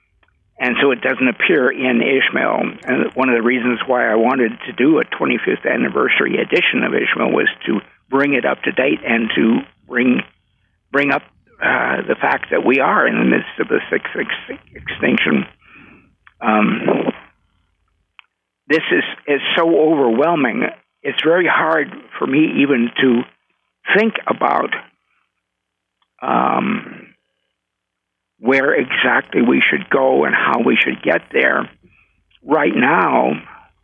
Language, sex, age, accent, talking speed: English, male, 60-79, American, 140 wpm